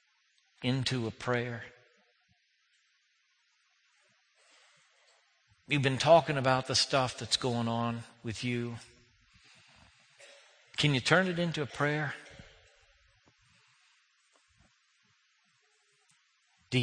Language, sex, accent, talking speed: English, male, American, 80 wpm